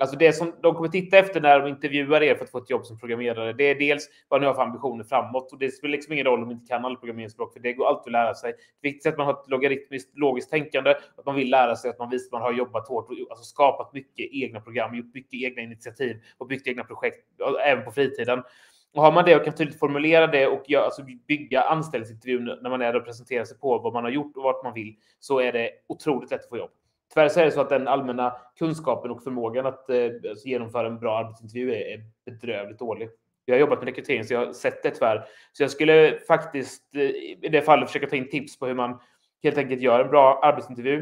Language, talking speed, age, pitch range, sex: Swedish, 250 wpm, 20-39, 120-145 Hz, male